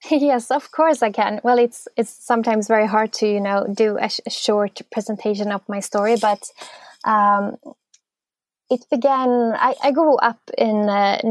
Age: 20-39